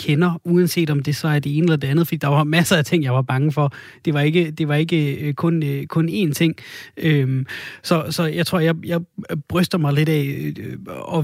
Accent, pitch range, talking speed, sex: native, 145-170 Hz, 230 wpm, male